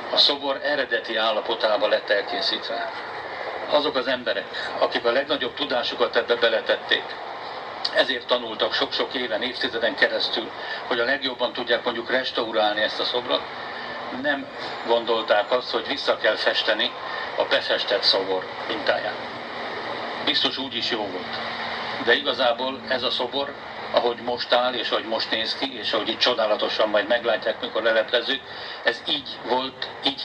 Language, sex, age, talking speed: Hungarian, male, 60-79, 140 wpm